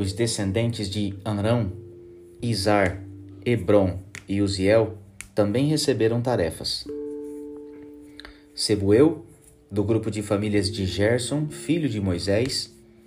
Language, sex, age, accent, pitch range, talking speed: Portuguese, male, 30-49, Brazilian, 100-130 Hz, 95 wpm